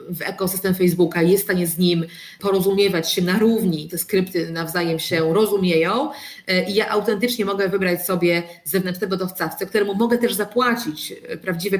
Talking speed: 155 wpm